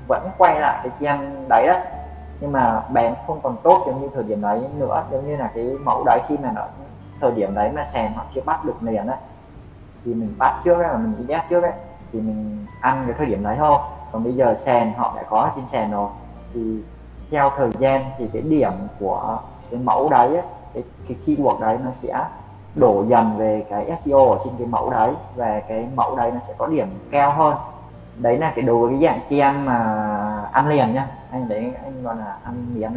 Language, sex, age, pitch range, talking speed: Vietnamese, male, 20-39, 105-135 Hz, 225 wpm